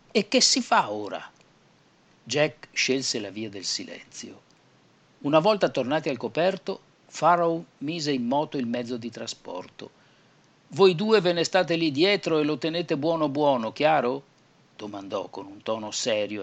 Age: 50-69